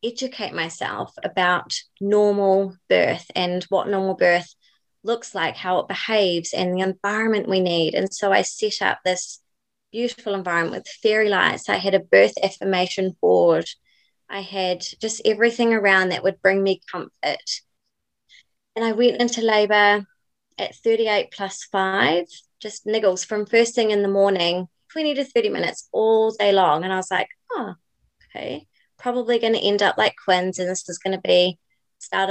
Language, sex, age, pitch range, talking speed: English, female, 20-39, 185-235 Hz, 170 wpm